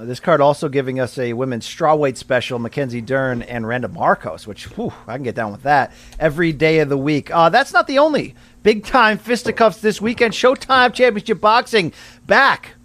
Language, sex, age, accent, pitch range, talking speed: English, male, 40-59, American, 170-215 Hz, 185 wpm